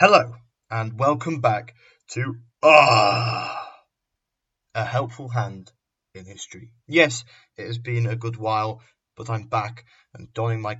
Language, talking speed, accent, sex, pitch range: English, 135 wpm, British, male, 110-120 Hz